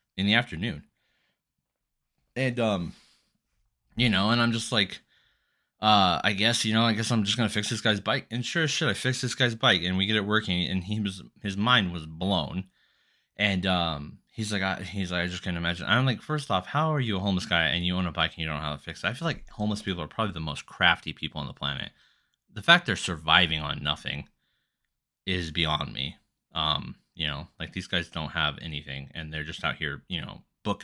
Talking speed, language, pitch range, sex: 230 wpm, English, 80-110 Hz, male